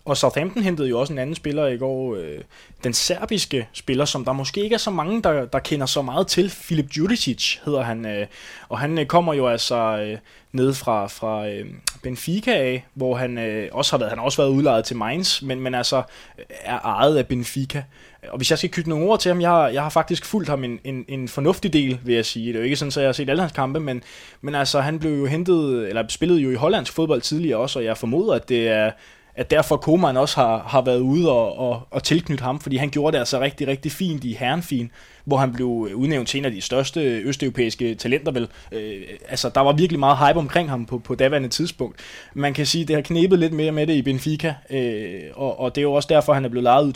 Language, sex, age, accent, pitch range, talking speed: Danish, male, 20-39, native, 125-155 Hz, 250 wpm